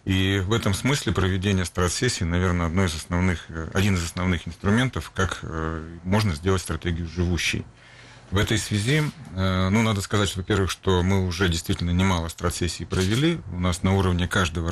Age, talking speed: 40-59, 160 wpm